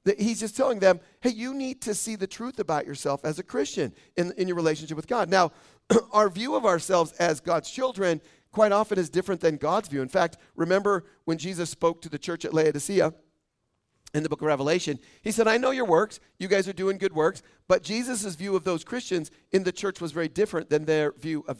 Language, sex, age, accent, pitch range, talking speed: English, male, 40-59, American, 155-195 Hz, 230 wpm